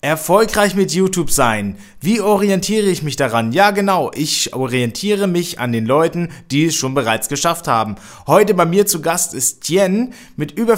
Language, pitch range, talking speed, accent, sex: German, 125-175 Hz, 180 wpm, German, male